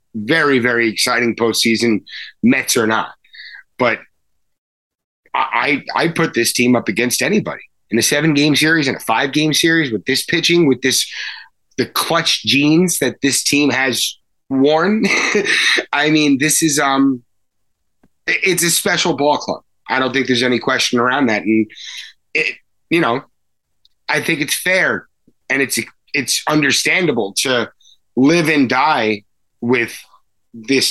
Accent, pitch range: American, 110-145 Hz